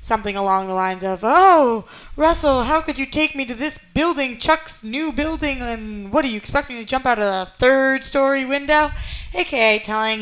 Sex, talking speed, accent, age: female, 195 wpm, American, 20-39